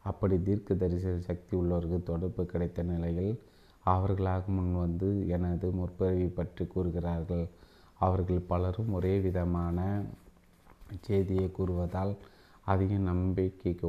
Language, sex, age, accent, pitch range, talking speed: Tamil, male, 30-49, native, 85-95 Hz, 95 wpm